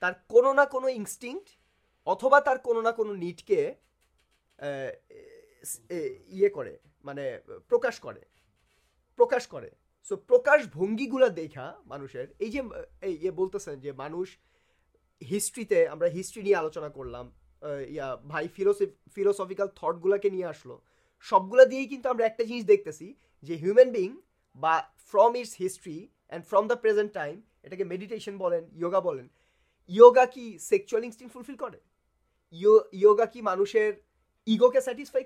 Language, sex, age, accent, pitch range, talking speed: Bengali, male, 30-49, native, 190-275 Hz, 100 wpm